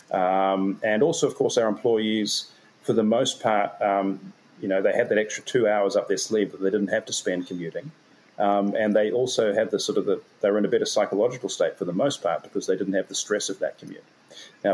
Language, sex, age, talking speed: English, male, 40-59, 245 wpm